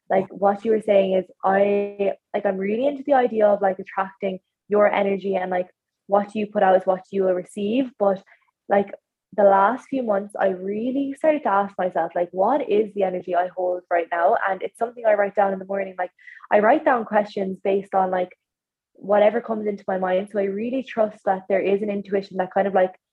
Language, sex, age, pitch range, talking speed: English, female, 20-39, 190-225 Hz, 220 wpm